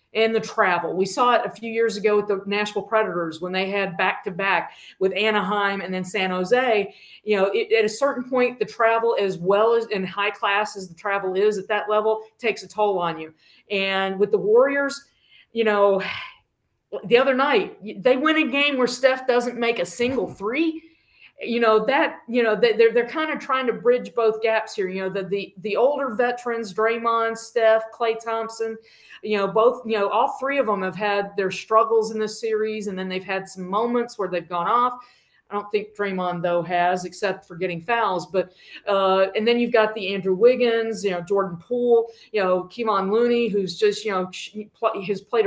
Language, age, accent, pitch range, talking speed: English, 40-59, American, 195-240 Hz, 205 wpm